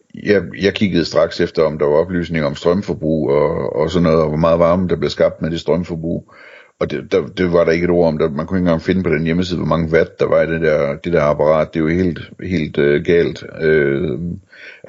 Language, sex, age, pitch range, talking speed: Danish, male, 60-79, 80-90 Hz, 255 wpm